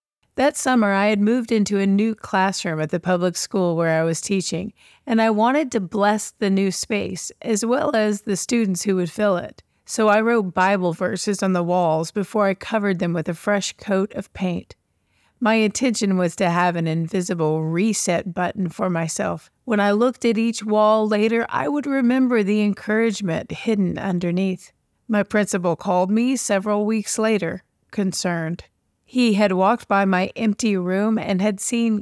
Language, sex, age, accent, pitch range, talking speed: English, female, 40-59, American, 185-225 Hz, 180 wpm